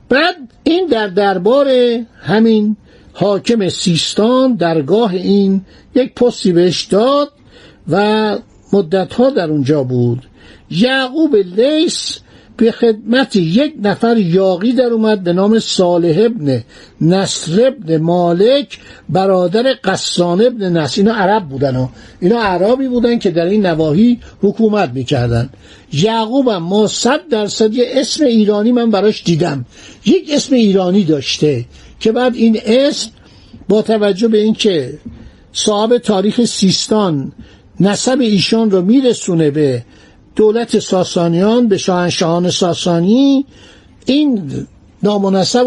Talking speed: 115 wpm